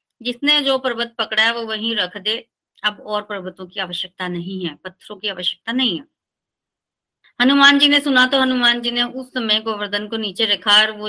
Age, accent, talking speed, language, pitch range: 30-49, native, 200 wpm, Hindi, 200-250 Hz